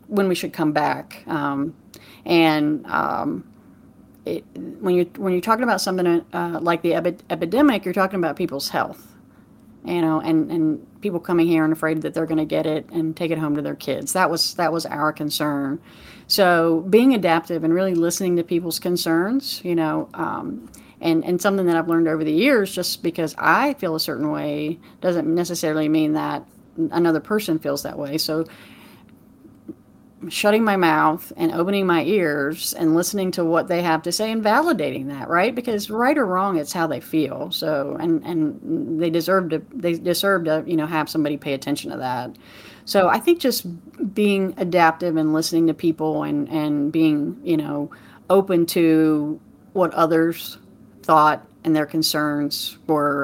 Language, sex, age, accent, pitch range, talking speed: English, female, 40-59, American, 155-185 Hz, 180 wpm